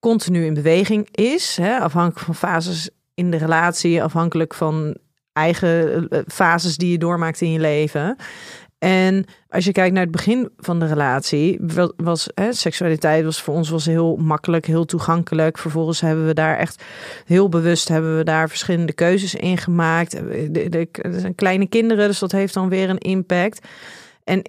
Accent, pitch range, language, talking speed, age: Dutch, 165-195 Hz, Dutch, 165 wpm, 40-59